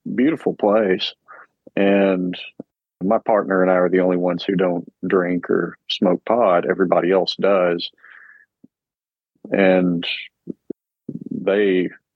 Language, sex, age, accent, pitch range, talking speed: English, male, 40-59, American, 90-100 Hz, 110 wpm